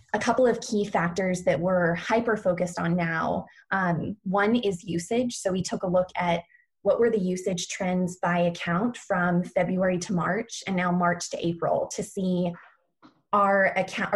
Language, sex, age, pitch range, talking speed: English, female, 20-39, 175-200 Hz, 170 wpm